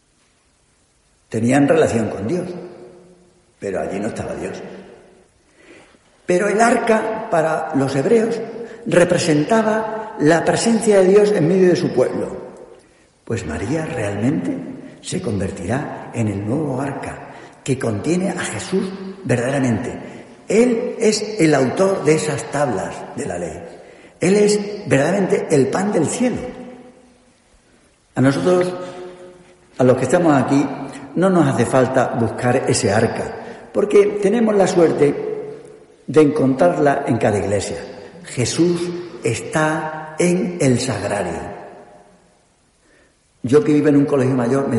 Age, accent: 50-69, Spanish